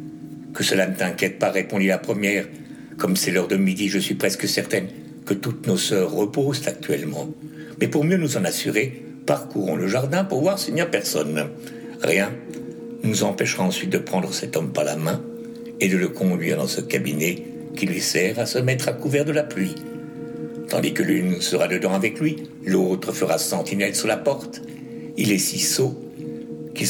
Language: French